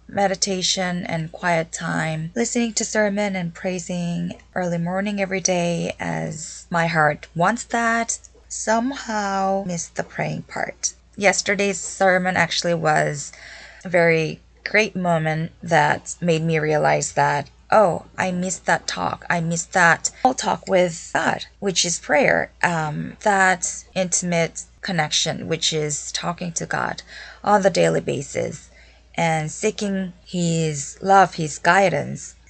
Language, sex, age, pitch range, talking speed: English, female, 20-39, 155-195 Hz, 130 wpm